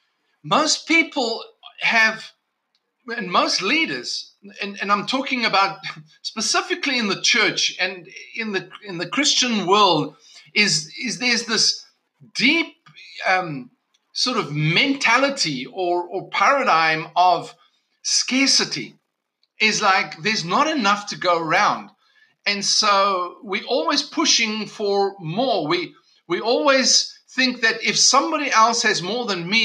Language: English